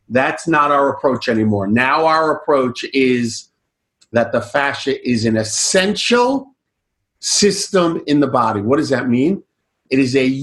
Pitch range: 140-185 Hz